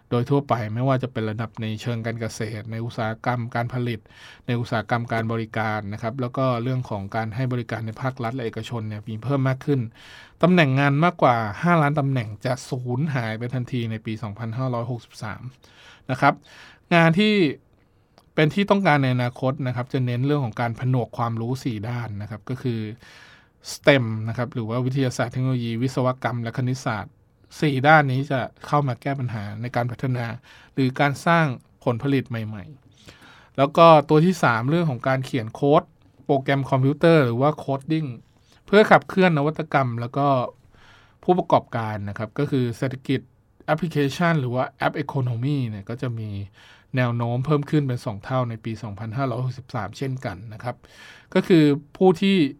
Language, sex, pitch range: Thai, male, 115-140 Hz